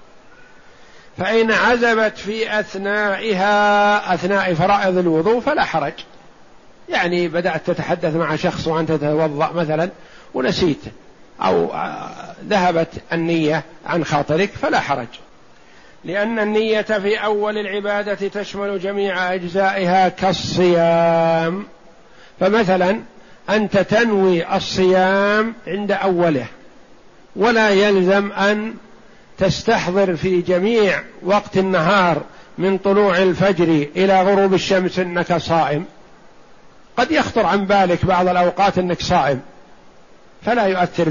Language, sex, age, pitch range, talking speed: Arabic, male, 50-69, 175-205 Hz, 95 wpm